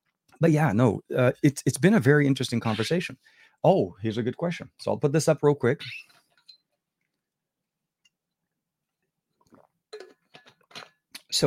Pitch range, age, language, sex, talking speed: 100-140 Hz, 30-49, English, male, 125 wpm